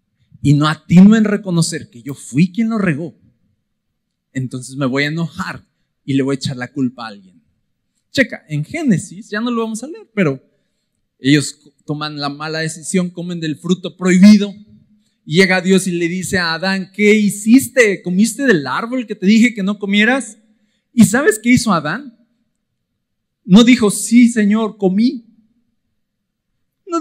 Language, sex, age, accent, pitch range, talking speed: Spanish, male, 40-59, Mexican, 155-225 Hz, 165 wpm